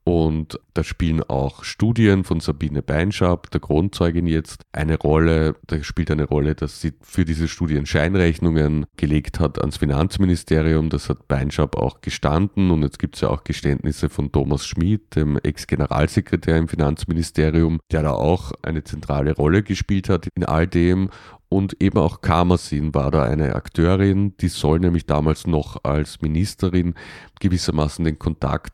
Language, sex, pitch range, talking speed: German, male, 75-90 Hz, 155 wpm